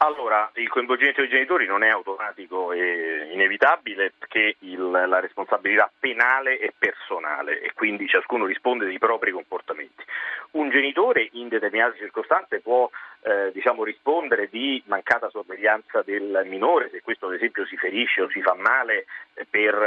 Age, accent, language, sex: 40-59, native, Italian, male